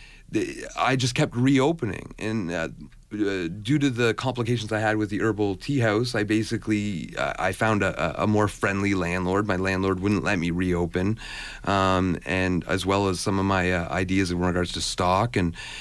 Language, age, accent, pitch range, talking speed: English, 40-59, American, 100-125 Hz, 185 wpm